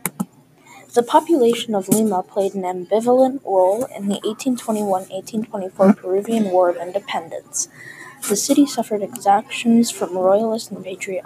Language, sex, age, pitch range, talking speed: English, female, 20-39, 190-235 Hz, 125 wpm